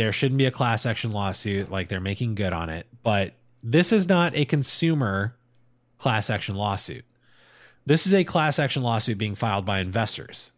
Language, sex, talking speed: English, male, 180 wpm